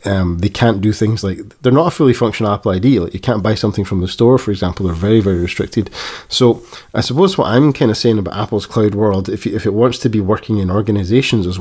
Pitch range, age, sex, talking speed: 100-120 Hz, 20-39, male, 255 wpm